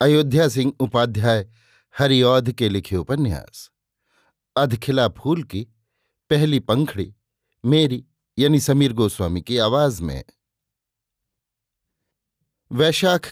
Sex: male